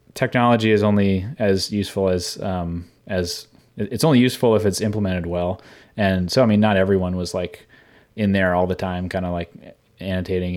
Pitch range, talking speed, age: 90-110 Hz, 180 wpm, 20-39